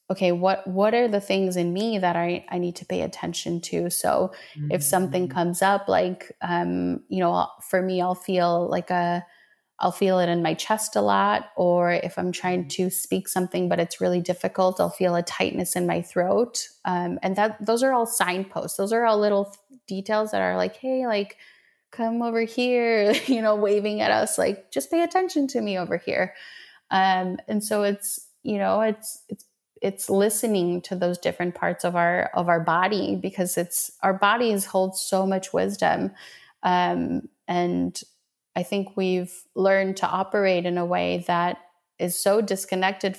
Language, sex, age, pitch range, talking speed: English, female, 20-39, 175-205 Hz, 185 wpm